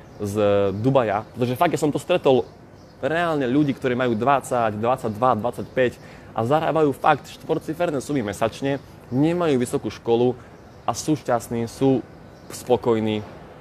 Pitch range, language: 110-140 Hz, Slovak